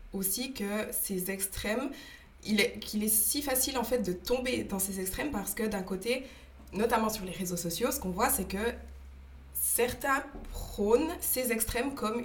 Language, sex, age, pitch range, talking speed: French, female, 20-39, 185-230 Hz, 175 wpm